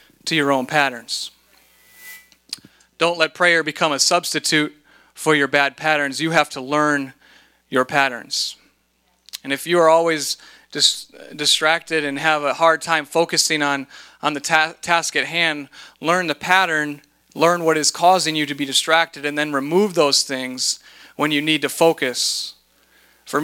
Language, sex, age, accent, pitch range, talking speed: English, male, 30-49, American, 140-160 Hz, 155 wpm